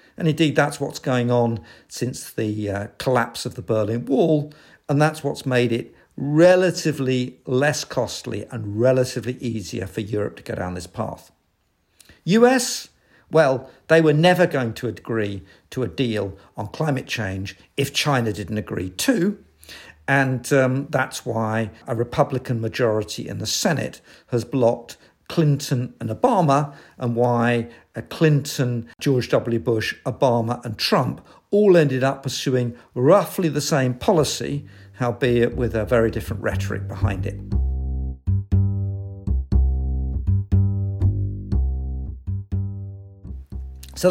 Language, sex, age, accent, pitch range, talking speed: English, male, 50-69, British, 105-145 Hz, 125 wpm